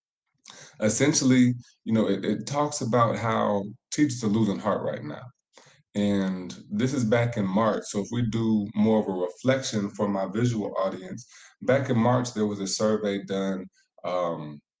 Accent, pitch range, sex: American, 95-115 Hz, male